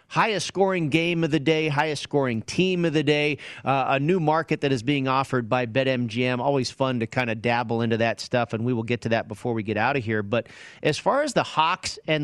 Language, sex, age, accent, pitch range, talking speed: English, male, 40-59, American, 125-160 Hz, 235 wpm